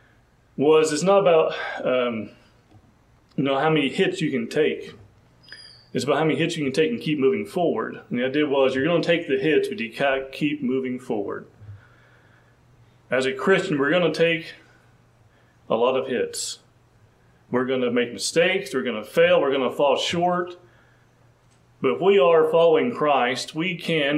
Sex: male